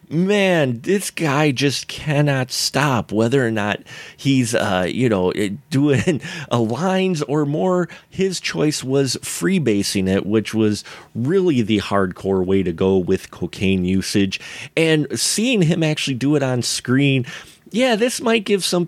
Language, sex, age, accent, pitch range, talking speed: English, male, 30-49, American, 120-170 Hz, 155 wpm